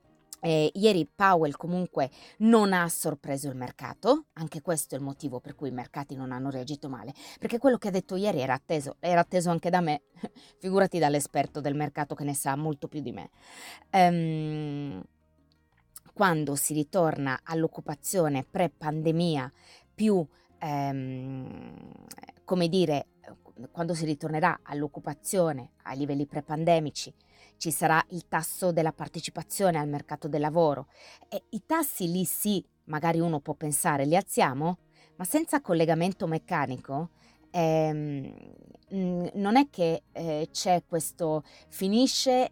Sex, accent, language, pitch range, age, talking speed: female, native, Italian, 145-190 Hz, 20-39, 130 wpm